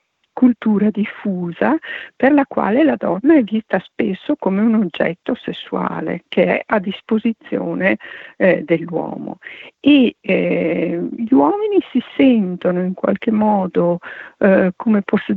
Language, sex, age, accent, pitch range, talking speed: Italian, female, 50-69, native, 190-260 Hz, 125 wpm